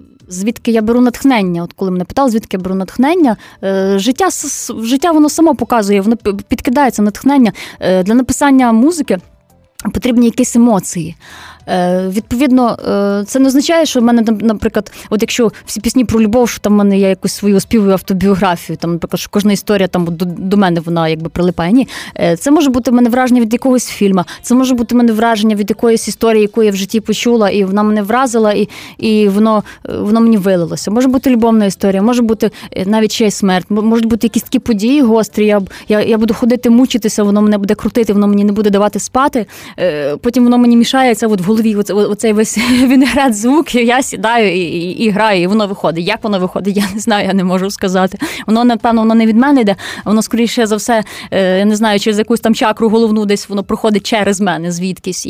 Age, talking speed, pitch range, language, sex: 20-39, 195 wpm, 200-240 Hz, Ukrainian, female